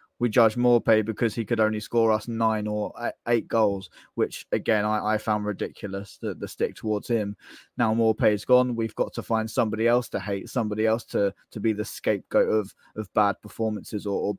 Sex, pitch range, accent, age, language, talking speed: male, 110-130 Hz, British, 10-29, English, 205 wpm